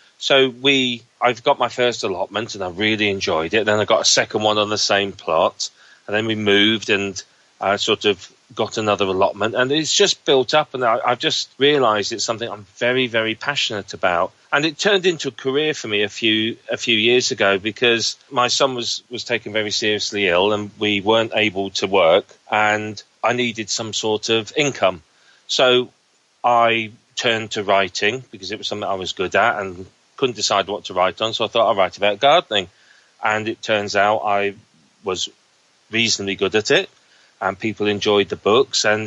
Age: 30-49